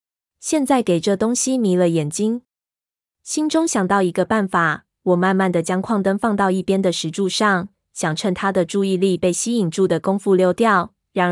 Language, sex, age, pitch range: Chinese, female, 20-39, 175-215 Hz